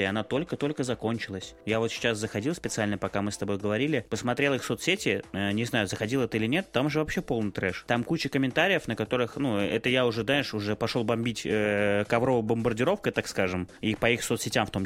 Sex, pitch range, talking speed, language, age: male, 105-125 Hz, 210 wpm, Russian, 20-39